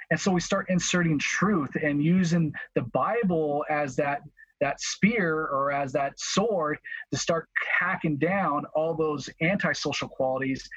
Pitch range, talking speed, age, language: 140-180 Hz, 145 wpm, 40-59, English